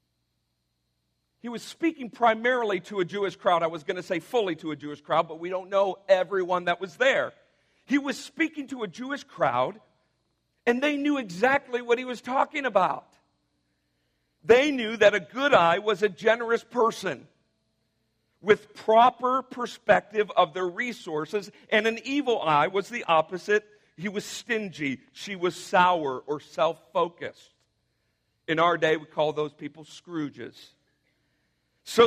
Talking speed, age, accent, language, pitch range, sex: 155 wpm, 50-69, American, English, 140-210 Hz, male